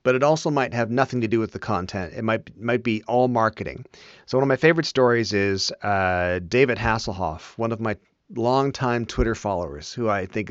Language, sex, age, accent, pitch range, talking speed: English, male, 40-59, American, 105-130 Hz, 205 wpm